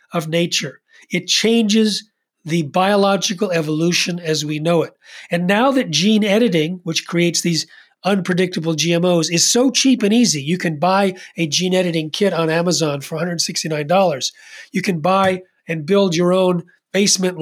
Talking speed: 155 wpm